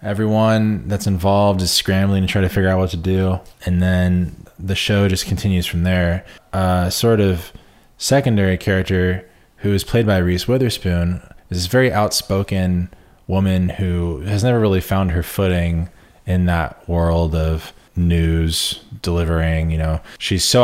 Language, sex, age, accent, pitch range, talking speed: English, male, 20-39, American, 90-105 Hz, 160 wpm